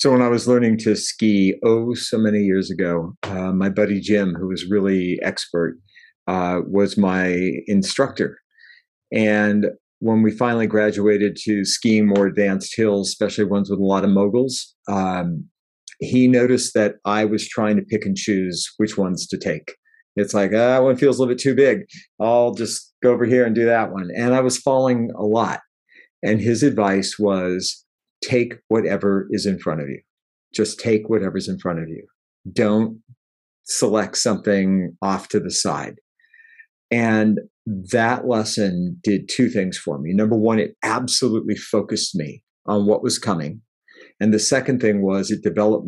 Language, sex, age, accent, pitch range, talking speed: English, male, 50-69, American, 100-115 Hz, 170 wpm